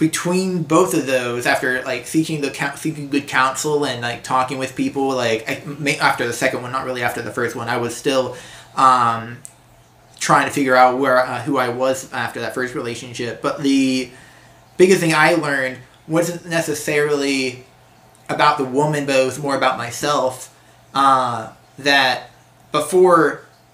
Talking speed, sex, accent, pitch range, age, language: 165 wpm, male, American, 125-145 Hz, 30-49, English